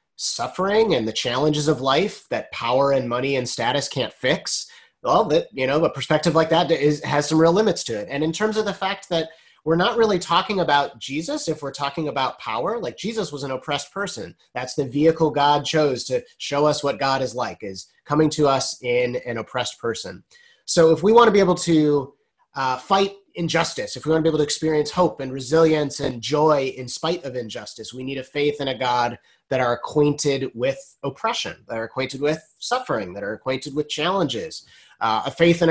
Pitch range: 130-165 Hz